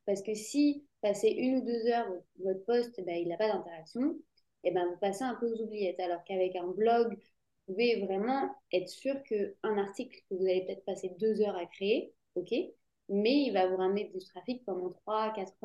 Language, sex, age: French, female, 20-39